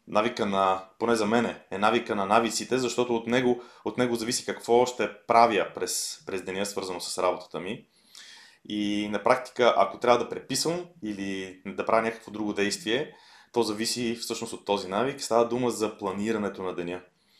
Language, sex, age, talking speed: Bulgarian, male, 20-39, 170 wpm